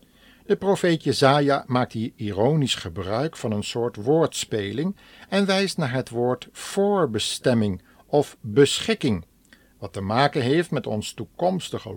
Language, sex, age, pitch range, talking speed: Dutch, male, 60-79, 110-150 Hz, 130 wpm